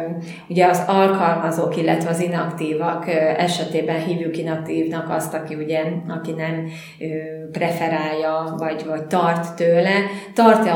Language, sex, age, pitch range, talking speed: Hungarian, female, 20-39, 160-170 Hz, 110 wpm